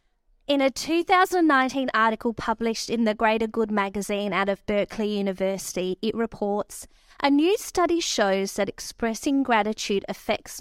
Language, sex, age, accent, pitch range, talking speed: English, female, 30-49, Australian, 205-270 Hz, 135 wpm